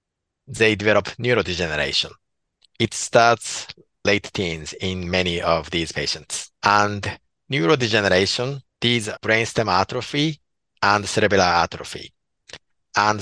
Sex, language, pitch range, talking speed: male, English, 95-120 Hz, 95 wpm